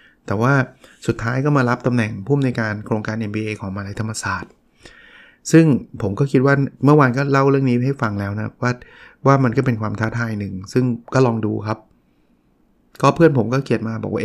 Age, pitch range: 20-39, 110-130 Hz